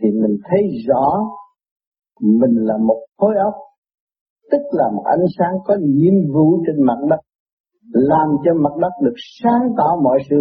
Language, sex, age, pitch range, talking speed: Vietnamese, male, 50-69, 135-215 Hz, 165 wpm